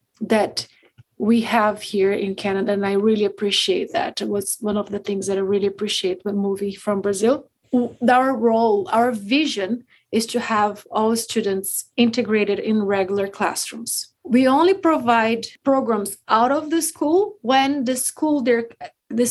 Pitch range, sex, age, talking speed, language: 200-245 Hz, female, 30-49, 160 wpm, English